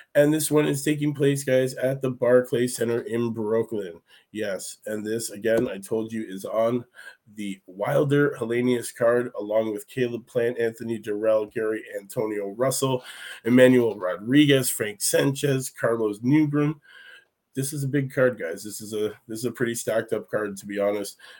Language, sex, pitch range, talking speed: English, male, 110-125 Hz, 170 wpm